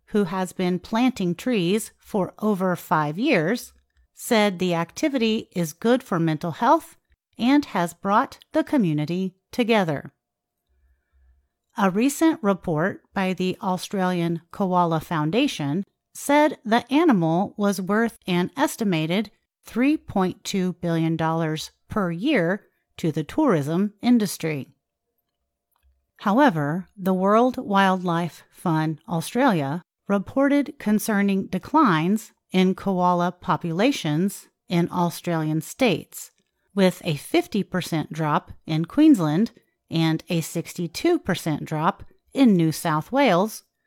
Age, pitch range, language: 40-59, 165-220 Hz, Chinese